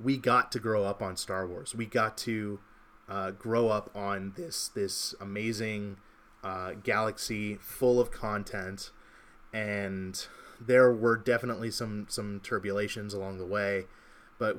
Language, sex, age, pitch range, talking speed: English, male, 30-49, 95-110 Hz, 140 wpm